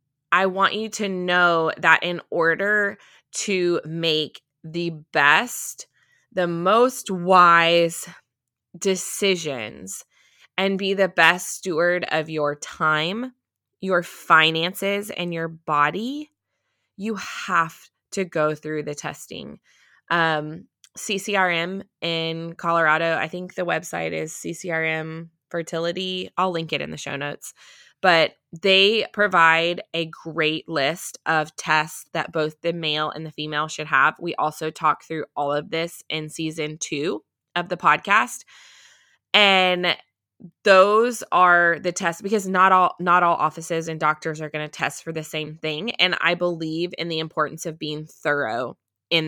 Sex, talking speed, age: female, 140 wpm, 20-39